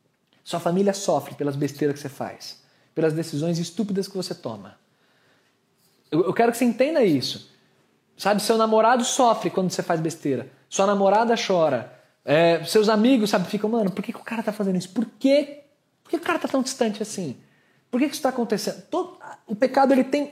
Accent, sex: Brazilian, male